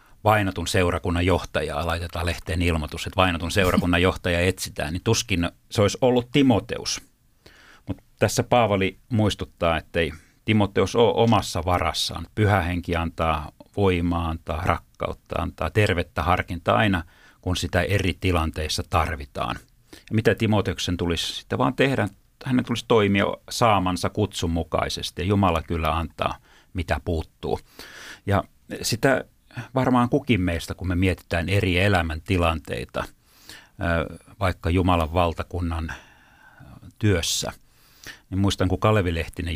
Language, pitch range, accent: Finnish, 85-100 Hz, native